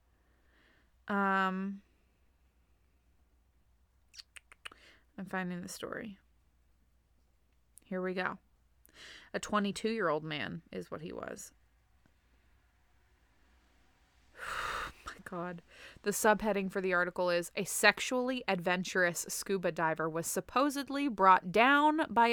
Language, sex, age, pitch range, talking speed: English, female, 20-39, 155-215 Hz, 90 wpm